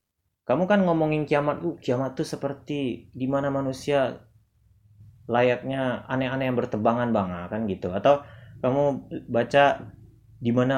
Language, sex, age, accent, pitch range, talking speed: Indonesian, male, 20-39, native, 110-140 Hz, 115 wpm